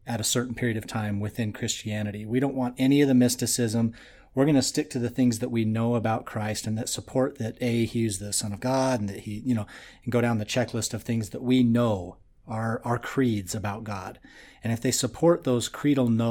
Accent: American